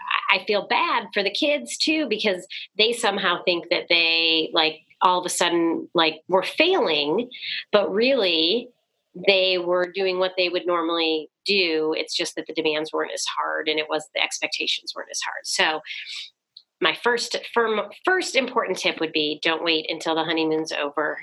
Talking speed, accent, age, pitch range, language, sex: 180 wpm, American, 30-49, 160-190 Hz, English, female